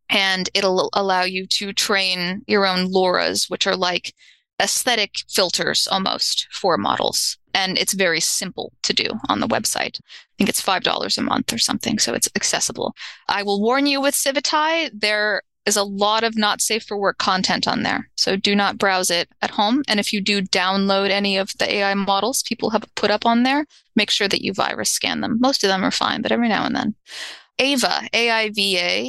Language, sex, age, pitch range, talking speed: English, female, 20-39, 190-230 Hz, 200 wpm